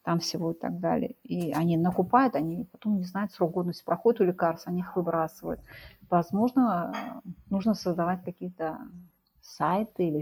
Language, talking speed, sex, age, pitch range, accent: Russian, 155 wpm, female, 30-49, 170-215 Hz, native